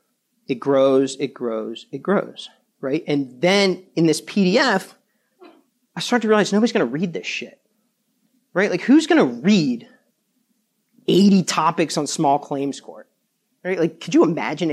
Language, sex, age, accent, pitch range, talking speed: English, male, 40-59, American, 155-230 Hz, 150 wpm